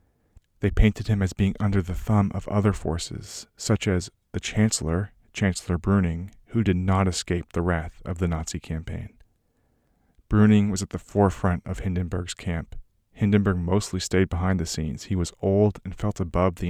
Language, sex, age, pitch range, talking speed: English, male, 30-49, 90-105 Hz, 175 wpm